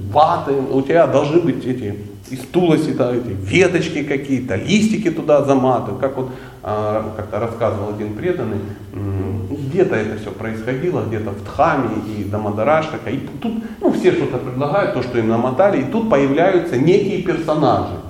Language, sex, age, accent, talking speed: Russian, male, 30-49, native, 145 wpm